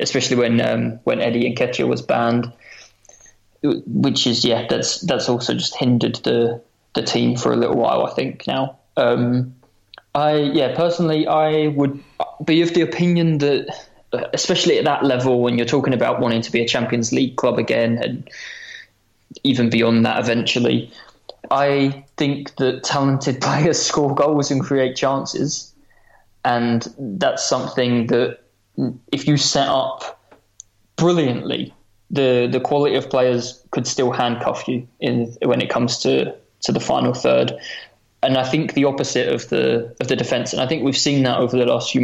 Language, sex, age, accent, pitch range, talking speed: English, male, 20-39, British, 115-140 Hz, 165 wpm